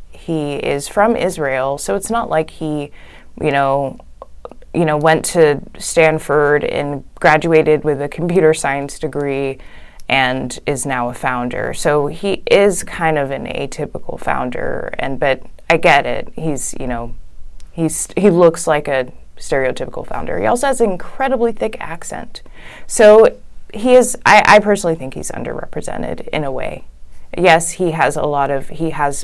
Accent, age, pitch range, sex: American, 20-39, 140-205 Hz, female